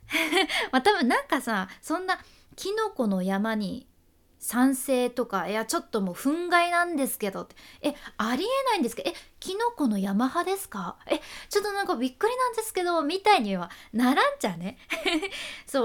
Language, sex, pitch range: Japanese, female, 205-335 Hz